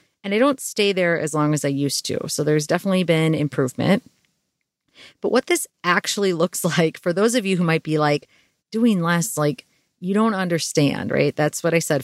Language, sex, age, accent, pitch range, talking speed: English, female, 30-49, American, 150-190 Hz, 205 wpm